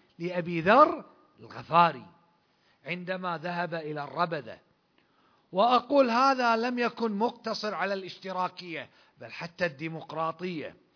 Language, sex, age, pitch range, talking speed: Arabic, male, 50-69, 190-250 Hz, 95 wpm